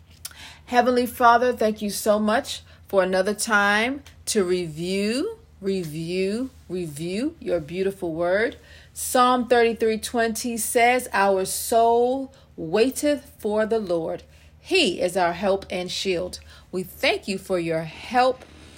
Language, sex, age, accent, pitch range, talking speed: English, female, 40-59, American, 175-245 Hz, 120 wpm